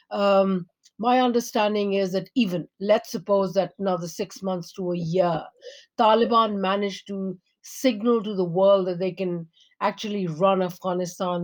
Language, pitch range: English, 185-225 Hz